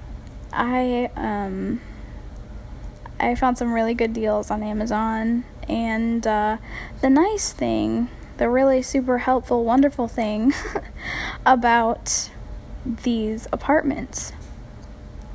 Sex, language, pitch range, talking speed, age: female, English, 230-270 Hz, 95 wpm, 10-29